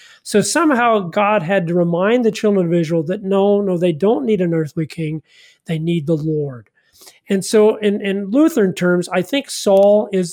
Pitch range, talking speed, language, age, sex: 170-215 Hz, 190 wpm, English, 40-59, male